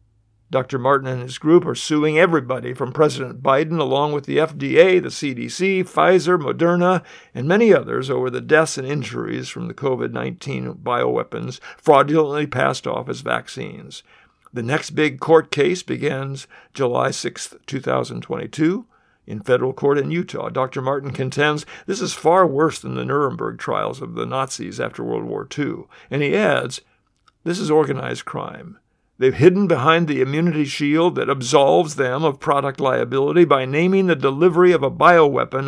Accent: American